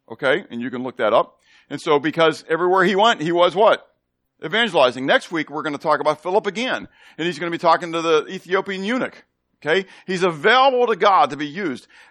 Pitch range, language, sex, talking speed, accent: 115-180 Hz, English, male, 220 wpm, American